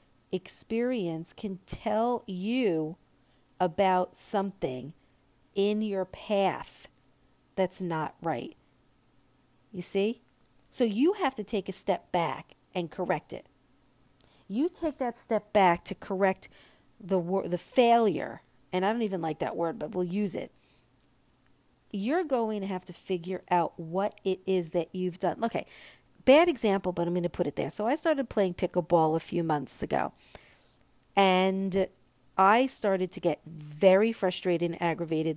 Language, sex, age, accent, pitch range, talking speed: English, female, 50-69, American, 155-205 Hz, 150 wpm